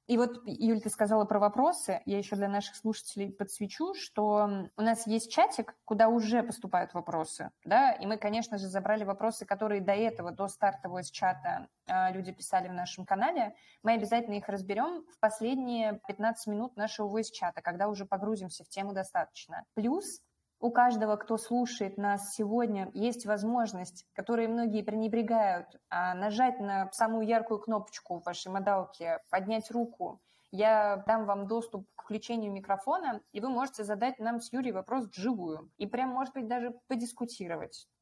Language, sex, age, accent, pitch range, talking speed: Russian, female, 20-39, native, 200-240 Hz, 160 wpm